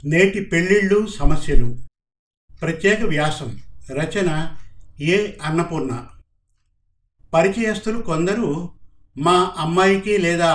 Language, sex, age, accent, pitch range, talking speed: Telugu, male, 50-69, native, 140-190 Hz, 75 wpm